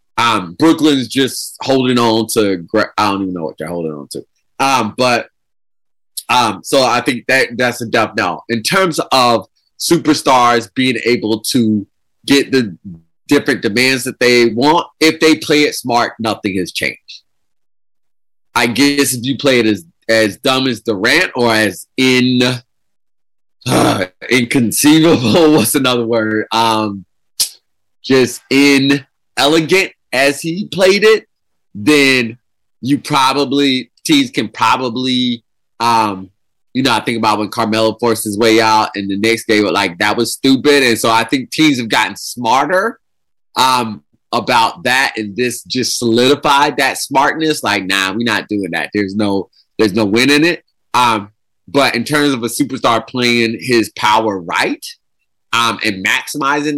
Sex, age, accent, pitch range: male, 30-49, American, 110-140 Hz